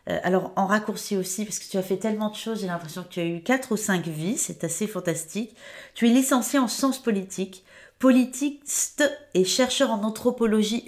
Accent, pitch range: French, 165-215 Hz